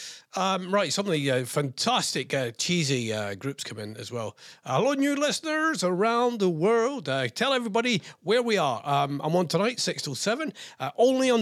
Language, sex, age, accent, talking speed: English, male, 40-59, British, 195 wpm